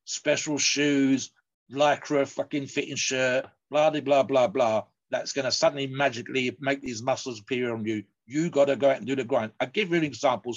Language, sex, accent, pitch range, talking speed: English, male, British, 120-150 Hz, 185 wpm